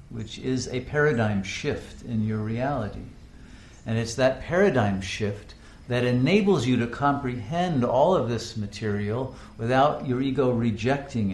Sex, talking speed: male, 140 wpm